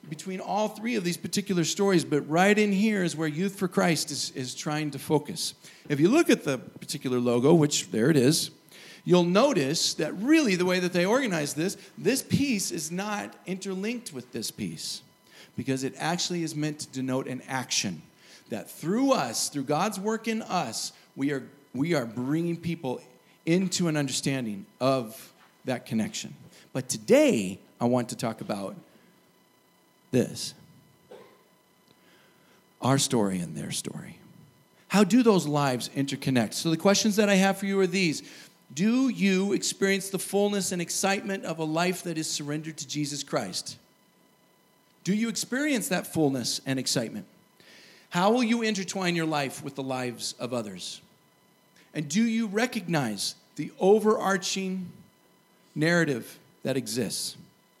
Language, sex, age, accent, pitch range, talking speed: English, male, 40-59, American, 145-195 Hz, 155 wpm